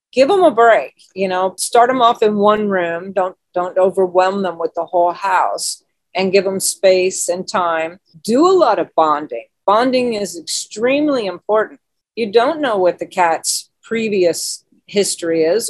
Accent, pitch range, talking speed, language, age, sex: American, 175-225 Hz, 170 wpm, English, 40-59, female